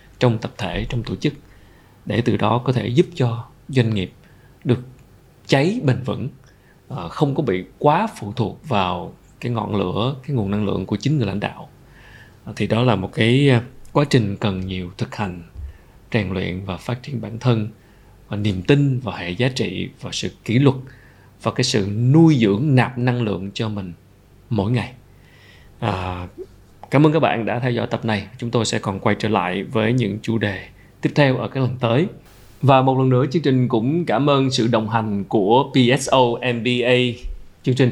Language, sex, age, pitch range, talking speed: Vietnamese, male, 20-39, 105-130 Hz, 195 wpm